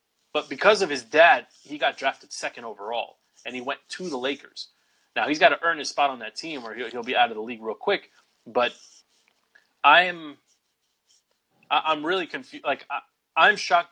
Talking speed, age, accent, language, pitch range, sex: 190 wpm, 30-49, American, English, 140-190 Hz, male